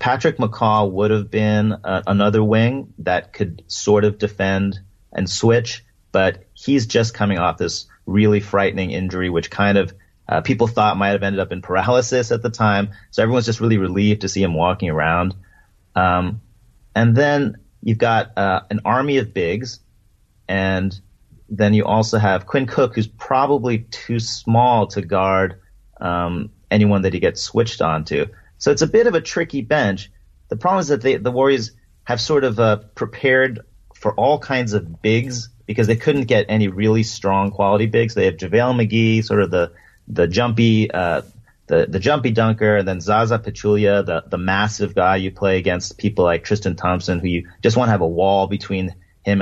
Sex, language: male, English